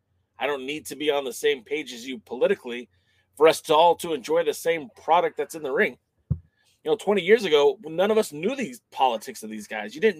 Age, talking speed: 30-49, 240 wpm